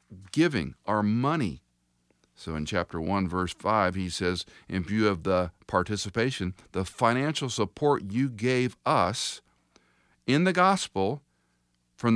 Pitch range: 90-140 Hz